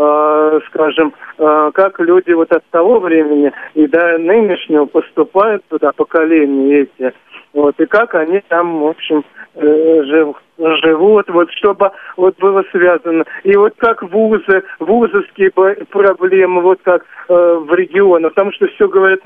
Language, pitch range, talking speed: Russian, 160-205 Hz, 130 wpm